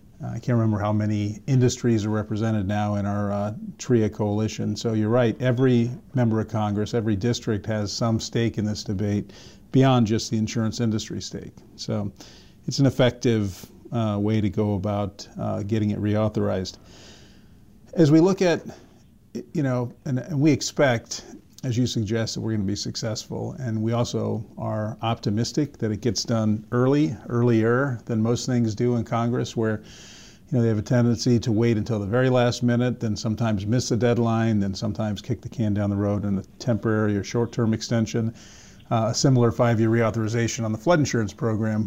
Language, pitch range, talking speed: English, 105-120 Hz, 180 wpm